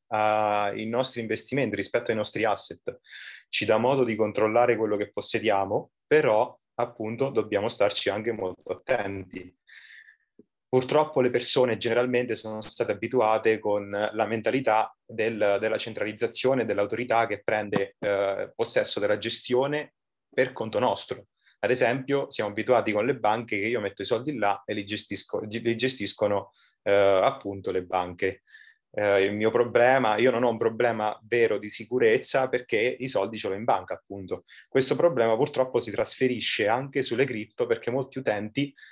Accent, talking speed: native, 155 wpm